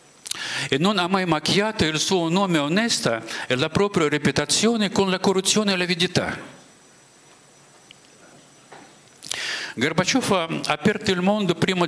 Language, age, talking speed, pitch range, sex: Italian, 50-69, 125 wpm, 150-195 Hz, male